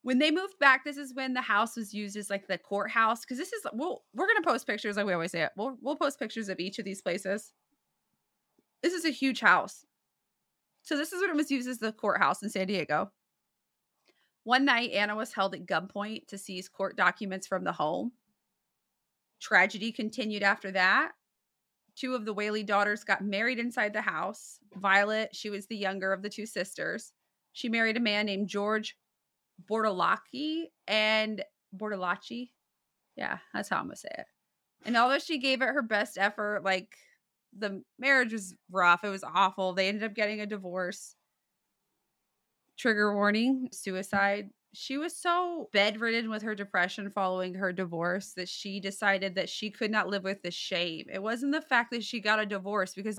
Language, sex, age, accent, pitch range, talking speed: English, female, 20-39, American, 195-235 Hz, 185 wpm